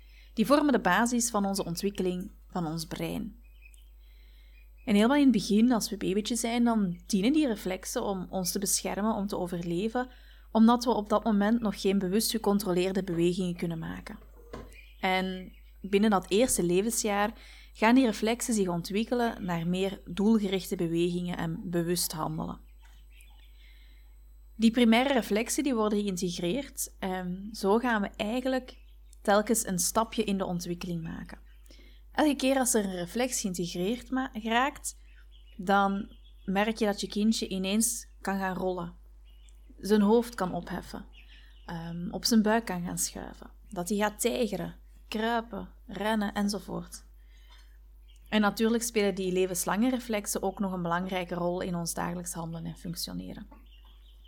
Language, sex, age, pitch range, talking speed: Dutch, female, 20-39, 175-225 Hz, 145 wpm